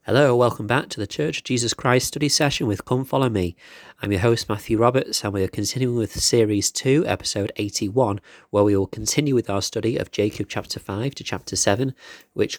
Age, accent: 30-49, British